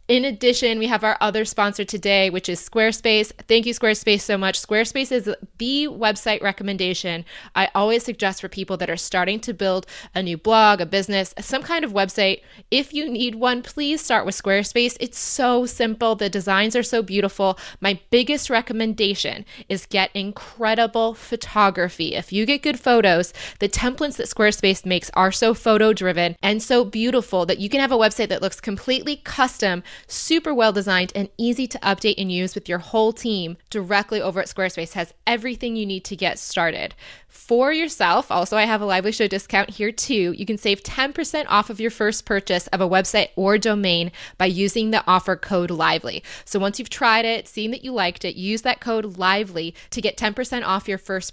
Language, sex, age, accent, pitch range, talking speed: English, female, 20-39, American, 190-235 Hz, 190 wpm